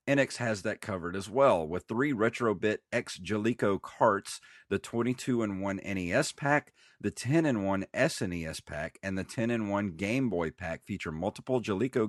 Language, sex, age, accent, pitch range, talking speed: English, male, 40-59, American, 95-120 Hz, 175 wpm